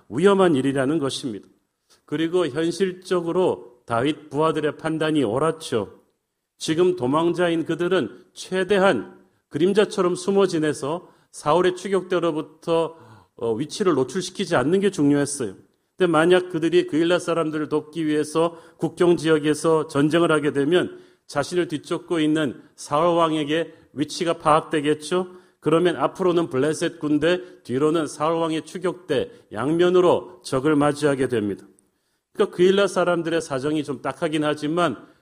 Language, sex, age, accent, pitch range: Korean, male, 40-59, native, 145-175 Hz